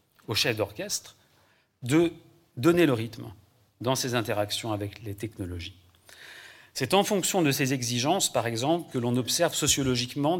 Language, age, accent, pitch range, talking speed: French, 40-59, French, 115-150 Hz, 145 wpm